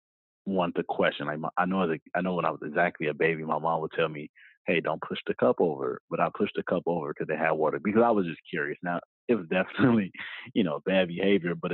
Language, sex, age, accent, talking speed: English, male, 30-49, American, 255 wpm